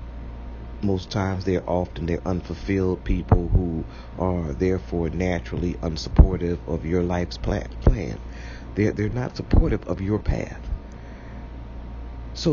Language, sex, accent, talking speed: English, male, American, 115 wpm